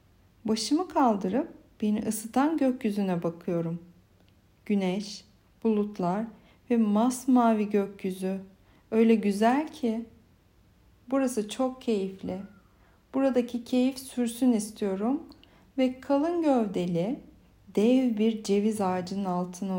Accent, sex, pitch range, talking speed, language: native, female, 185-255 Hz, 90 wpm, Turkish